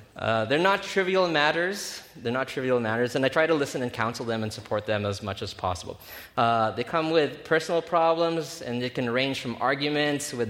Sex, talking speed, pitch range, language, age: male, 210 wpm, 110-150 Hz, English, 20-39